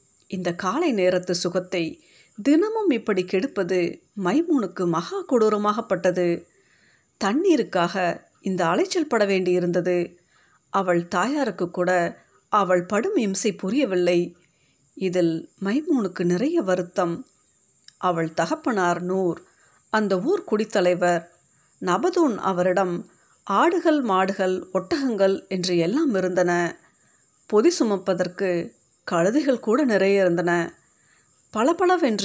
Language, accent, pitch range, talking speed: Tamil, native, 175-215 Hz, 85 wpm